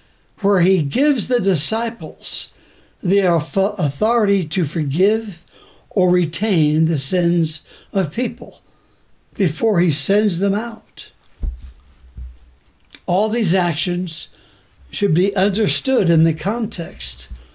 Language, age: English, 60-79